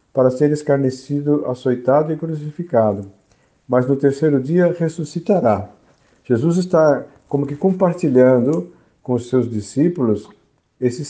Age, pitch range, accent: 50-69, 120-160 Hz, Brazilian